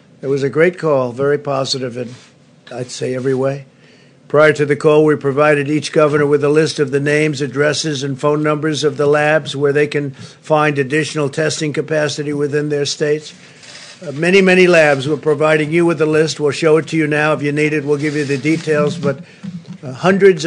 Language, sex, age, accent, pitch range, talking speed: English, male, 50-69, American, 145-155 Hz, 210 wpm